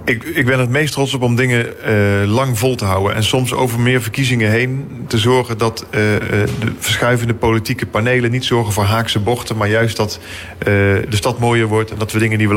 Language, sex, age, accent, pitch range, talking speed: Dutch, male, 40-59, Dutch, 110-125 Hz, 225 wpm